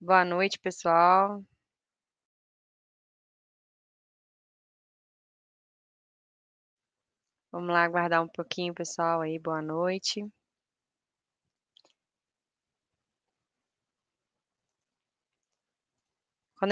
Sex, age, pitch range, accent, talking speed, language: female, 10-29, 185-220 Hz, Brazilian, 45 wpm, Portuguese